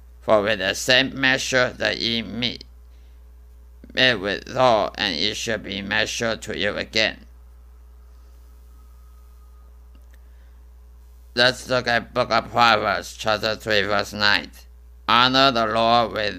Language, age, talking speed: English, 50-69, 115 wpm